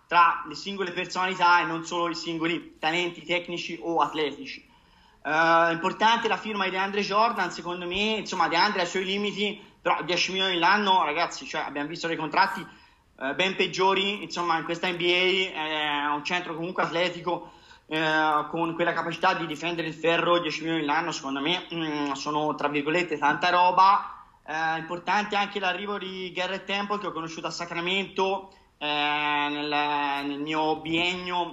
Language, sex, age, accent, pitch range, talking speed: Italian, male, 30-49, native, 165-185 Hz, 165 wpm